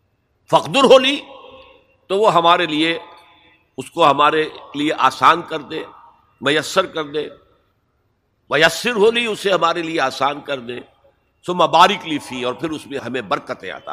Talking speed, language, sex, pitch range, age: 150 wpm, Urdu, male, 145-195 Hz, 60-79